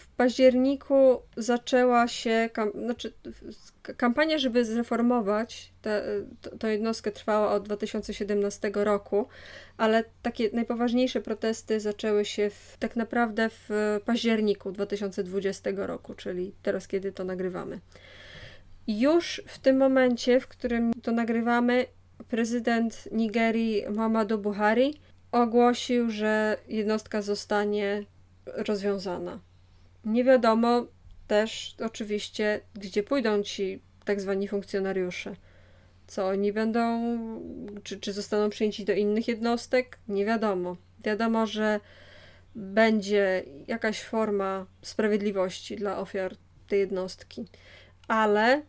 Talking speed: 100 wpm